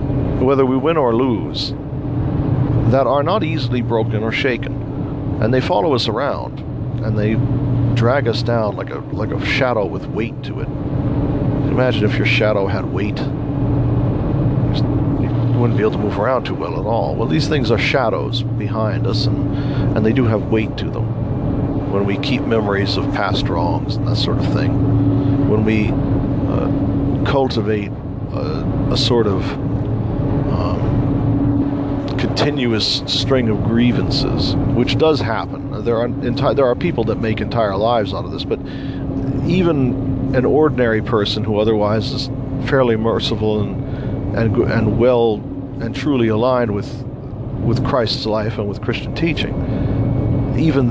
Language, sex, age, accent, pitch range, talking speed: English, male, 50-69, American, 110-135 Hz, 155 wpm